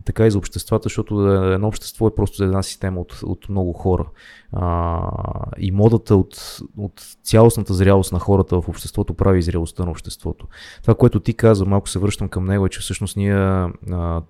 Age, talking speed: 20-39, 190 wpm